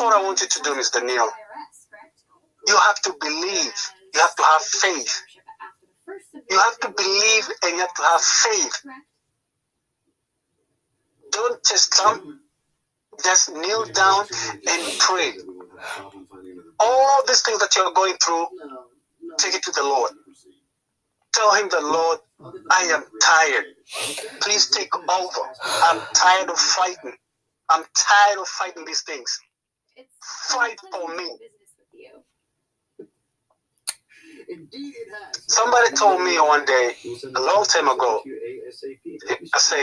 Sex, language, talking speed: male, English, 125 wpm